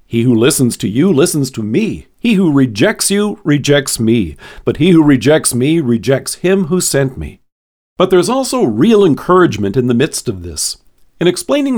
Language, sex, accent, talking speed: English, male, American, 185 wpm